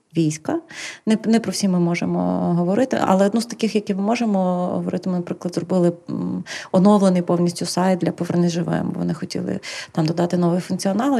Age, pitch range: 30-49, 175-205 Hz